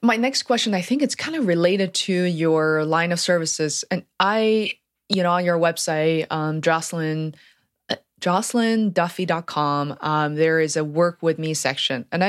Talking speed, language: 155 wpm, English